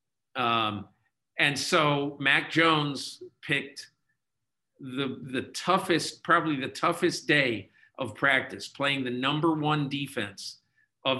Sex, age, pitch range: male, 50-69, 125-155 Hz